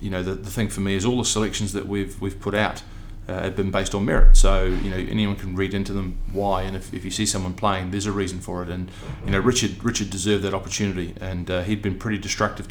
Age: 30-49